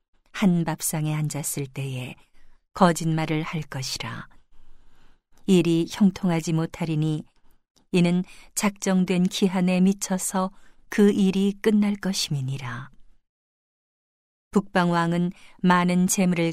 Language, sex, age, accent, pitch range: Korean, female, 40-59, native, 160-190 Hz